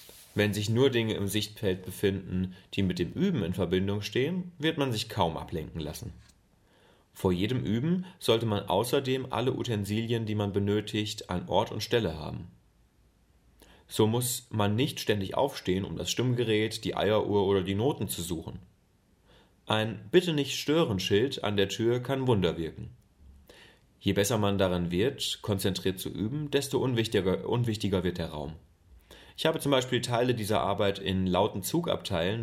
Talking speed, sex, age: 155 wpm, male, 30-49